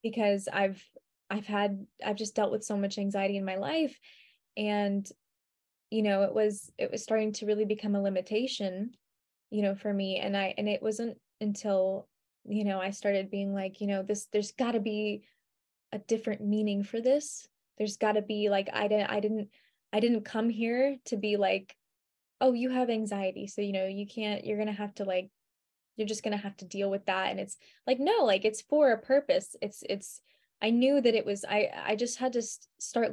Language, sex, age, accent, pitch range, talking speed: English, female, 20-39, American, 200-235 Hz, 210 wpm